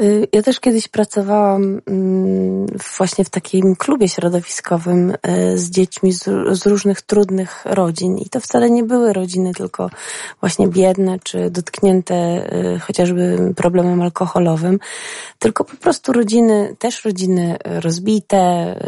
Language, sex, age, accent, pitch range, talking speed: Polish, female, 30-49, native, 175-225 Hz, 115 wpm